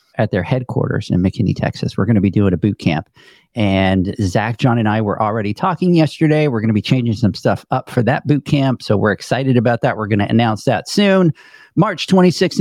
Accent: American